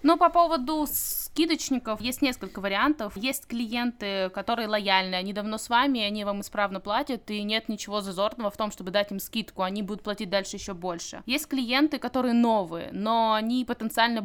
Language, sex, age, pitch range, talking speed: Russian, female, 20-39, 195-240 Hz, 175 wpm